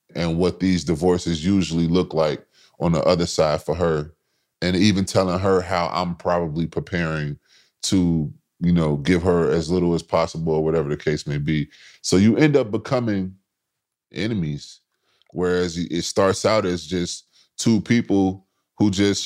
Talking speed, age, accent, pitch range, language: 160 wpm, 20-39, American, 85-95 Hz, English